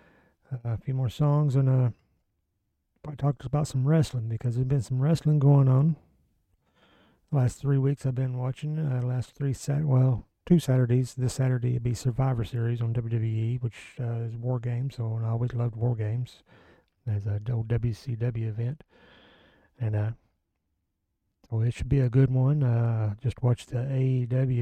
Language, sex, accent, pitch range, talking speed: English, male, American, 115-140 Hz, 170 wpm